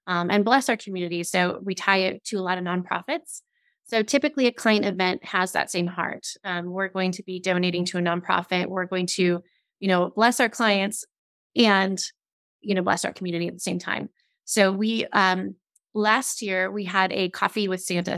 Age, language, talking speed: 20-39, English, 200 wpm